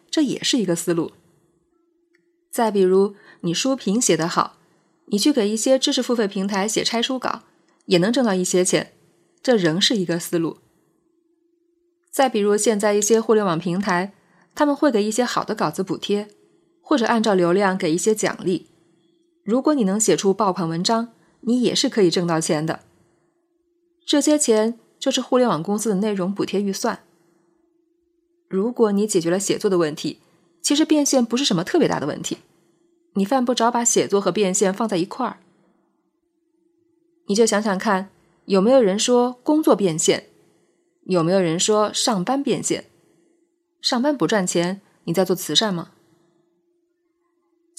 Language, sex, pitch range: Chinese, female, 185-300 Hz